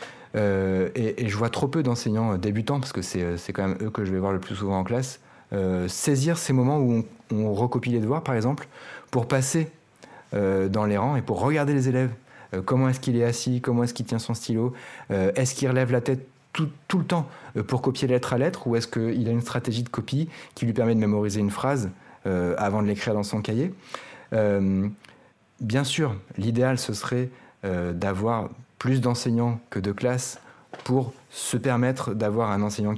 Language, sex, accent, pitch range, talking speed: French, male, French, 105-130 Hz, 210 wpm